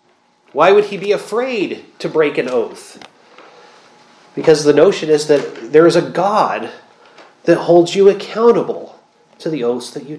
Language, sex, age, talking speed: English, male, 30-49, 160 wpm